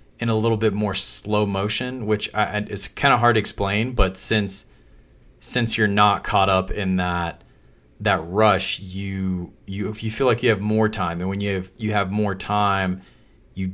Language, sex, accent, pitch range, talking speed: English, male, American, 95-110 Hz, 190 wpm